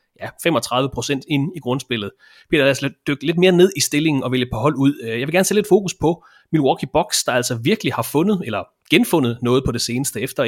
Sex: male